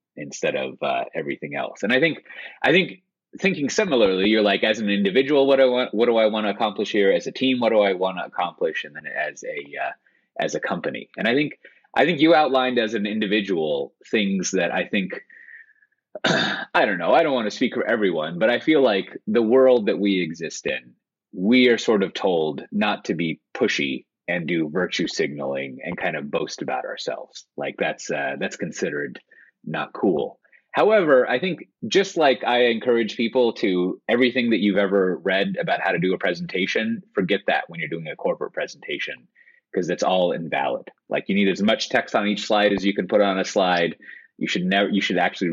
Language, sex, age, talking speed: English, male, 30-49, 210 wpm